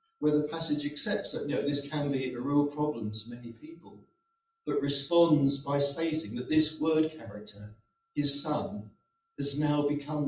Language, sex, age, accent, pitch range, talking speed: English, male, 50-69, British, 130-170 Hz, 170 wpm